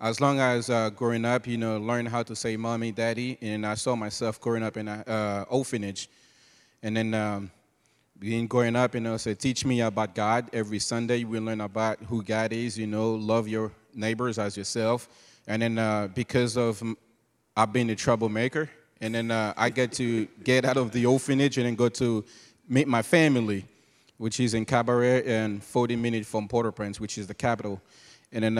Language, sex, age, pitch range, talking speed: English, male, 30-49, 110-120 Hz, 195 wpm